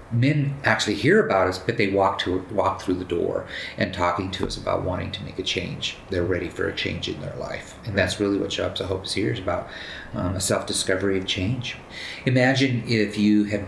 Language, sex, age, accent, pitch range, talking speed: English, male, 30-49, American, 90-105 Hz, 225 wpm